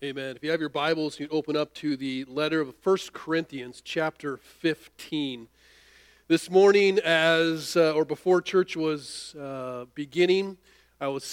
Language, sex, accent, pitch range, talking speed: English, male, American, 130-170 Hz, 155 wpm